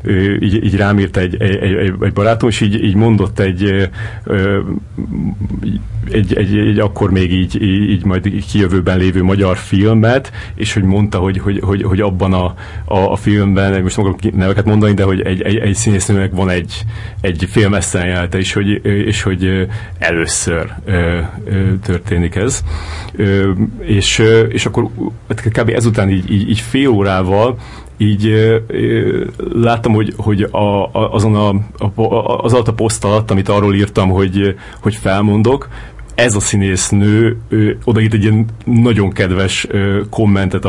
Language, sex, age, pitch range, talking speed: Hungarian, male, 40-59, 95-110 Hz, 155 wpm